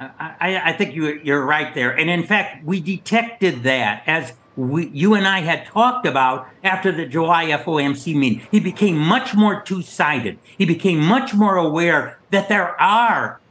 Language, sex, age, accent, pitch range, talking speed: English, male, 60-79, American, 155-195 Hz, 175 wpm